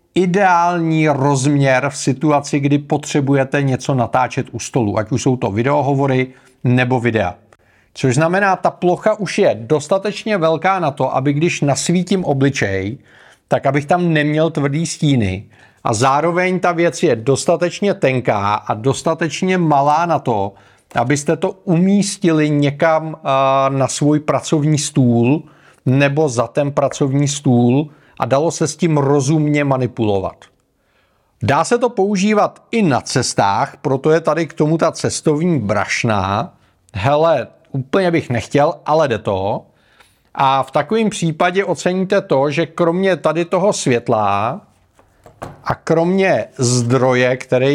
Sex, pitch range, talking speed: male, 130-170 Hz, 135 wpm